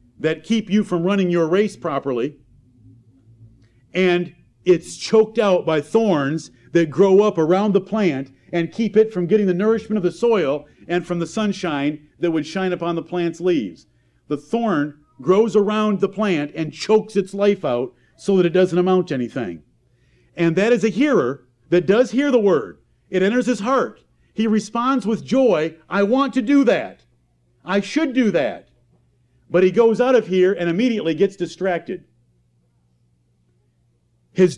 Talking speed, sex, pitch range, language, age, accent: 170 wpm, male, 145-210 Hz, English, 50-69, American